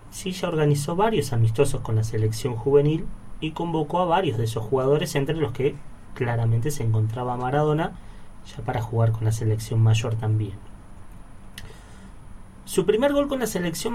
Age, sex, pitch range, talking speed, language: 30-49, male, 110-155 Hz, 155 wpm, Spanish